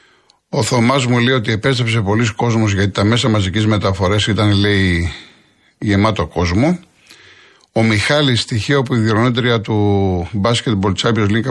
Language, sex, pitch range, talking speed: Greek, male, 100-125 Hz, 140 wpm